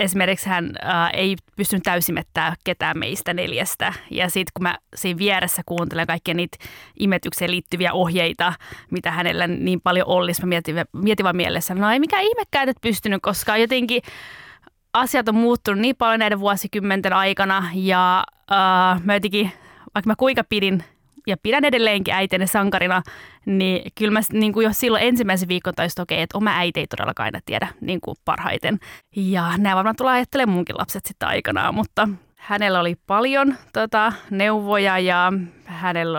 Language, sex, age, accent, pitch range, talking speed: Finnish, female, 20-39, native, 175-215 Hz, 160 wpm